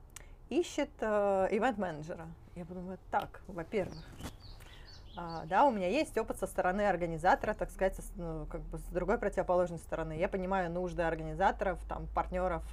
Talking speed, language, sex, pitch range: 120 wpm, Russian, female, 160-195 Hz